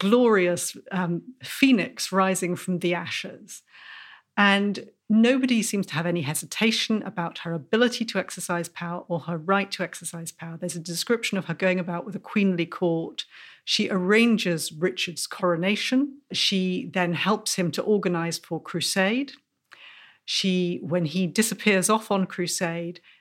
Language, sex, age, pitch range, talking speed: English, female, 40-59, 175-210 Hz, 145 wpm